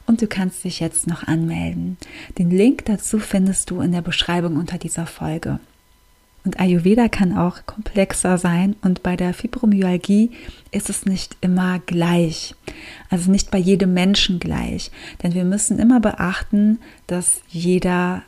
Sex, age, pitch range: female, 30-49, 175-200 Hz